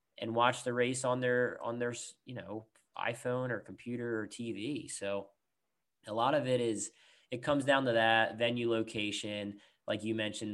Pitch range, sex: 100-110 Hz, male